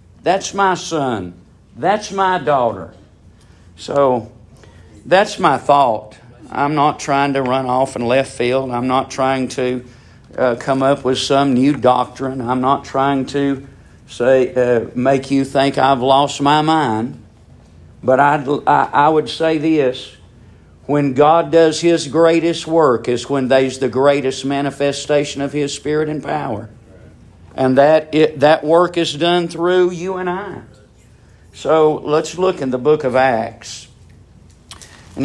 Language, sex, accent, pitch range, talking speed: English, male, American, 115-150 Hz, 150 wpm